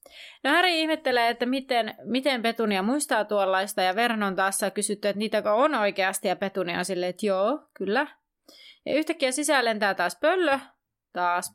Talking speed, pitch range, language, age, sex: 165 wpm, 190-255 Hz, Finnish, 30-49, female